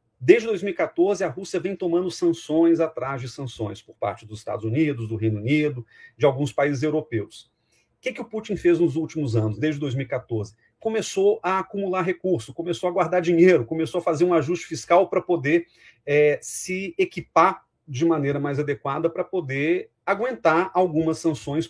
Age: 40-59